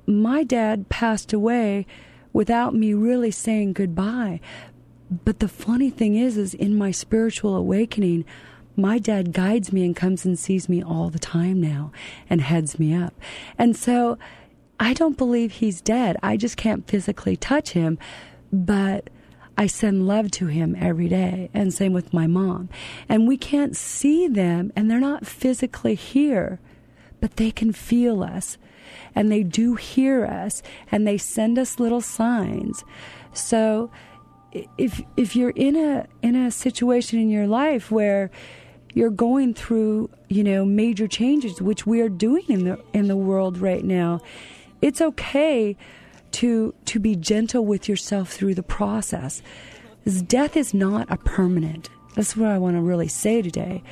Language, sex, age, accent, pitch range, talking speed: English, female, 40-59, American, 185-235 Hz, 160 wpm